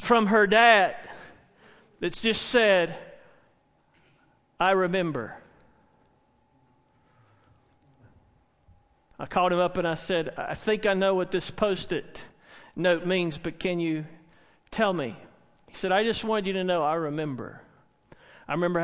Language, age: English, 40-59